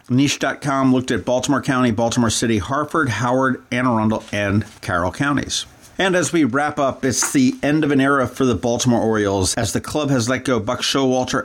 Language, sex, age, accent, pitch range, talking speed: English, male, 50-69, American, 105-130 Hz, 195 wpm